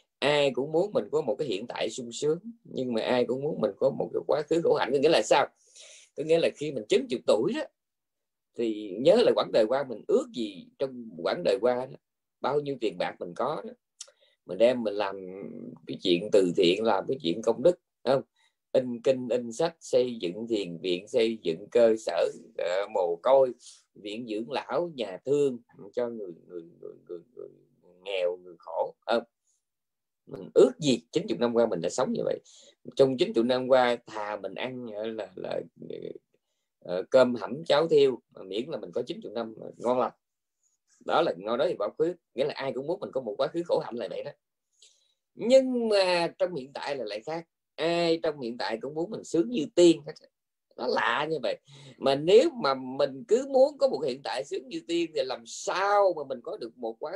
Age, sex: 20-39, male